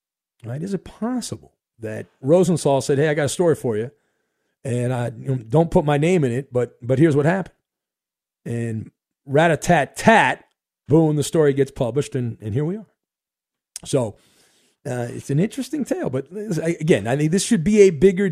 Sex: male